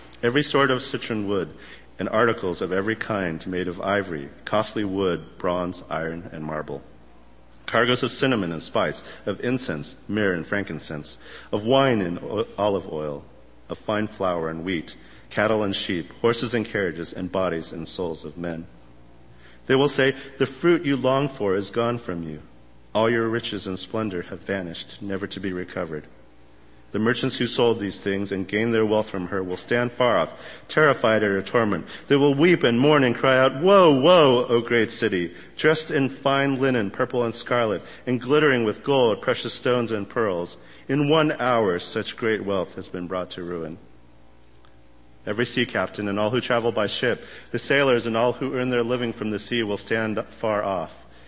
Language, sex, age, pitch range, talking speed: English, male, 50-69, 85-125 Hz, 185 wpm